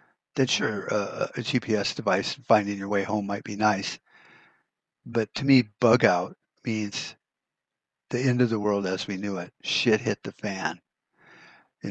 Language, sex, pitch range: English, male, 100-120 Hz